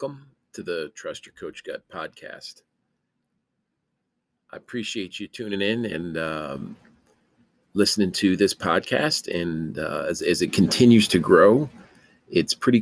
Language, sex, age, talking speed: English, male, 40-59, 135 wpm